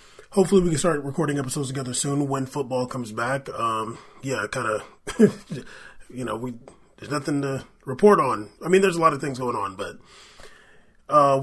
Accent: American